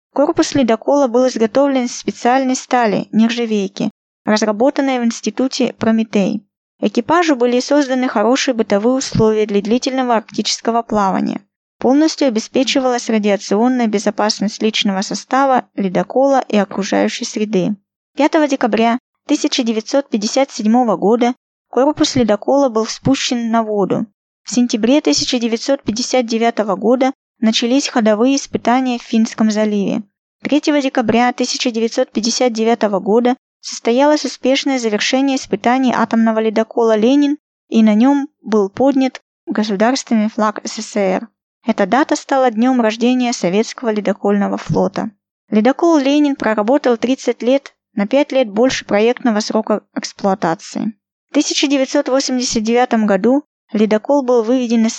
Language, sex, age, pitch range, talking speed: Russian, female, 20-39, 220-265 Hz, 105 wpm